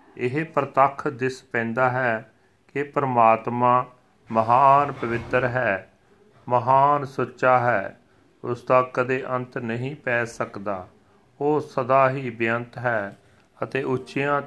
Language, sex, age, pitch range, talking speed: Punjabi, male, 40-59, 115-135 Hz, 110 wpm